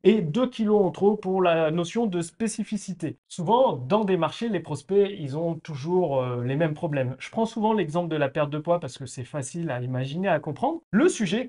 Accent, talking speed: French, 220 wpm